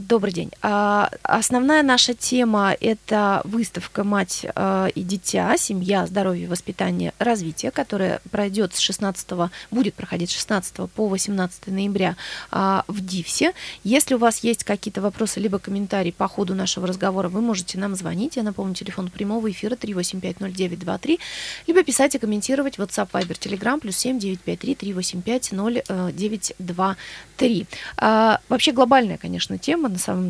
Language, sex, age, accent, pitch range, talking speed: Russian, female, 20-39, native, 185-225 Hz, 130 wpm